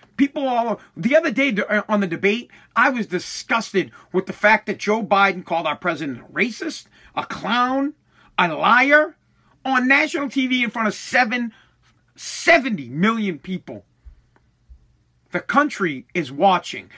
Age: 40-59